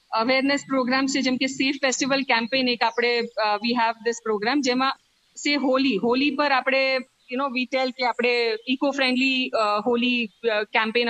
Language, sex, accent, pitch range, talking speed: Gujarati, female, native, 230-280 Hz, 150 wpm